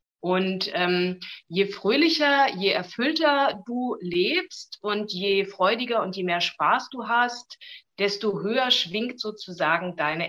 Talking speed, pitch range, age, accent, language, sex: 130 wpm, 180-220 Hz, 30-49, German, German, female